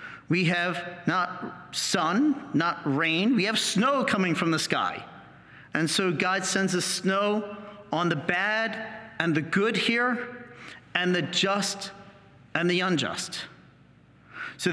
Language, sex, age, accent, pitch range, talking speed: English, male, 40-59, American, 180-245 Hz, 135 wpm